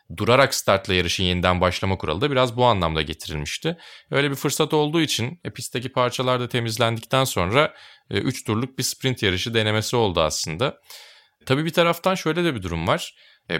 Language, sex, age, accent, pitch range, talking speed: Turkish, male, 30-49, native, 90-125 Hz, 170 wpm